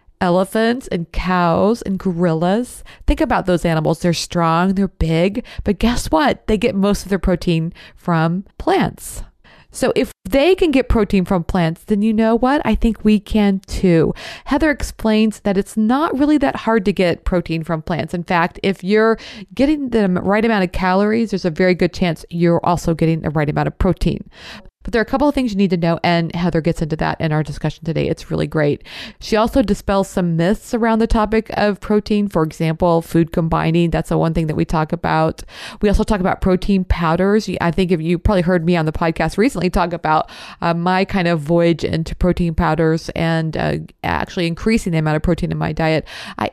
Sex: female